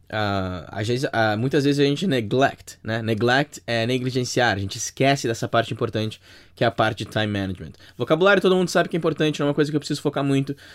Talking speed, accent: 235 wpm, Brazilian